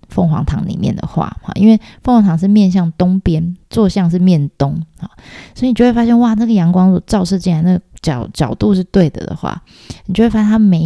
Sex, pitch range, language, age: female, 160-195 Hz, Chinese, 20-39